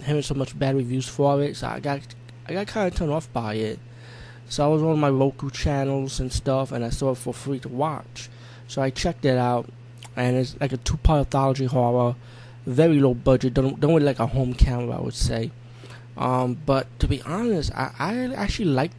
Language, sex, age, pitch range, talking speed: English, male, 20-39, 120-135 Hz, 230 wpm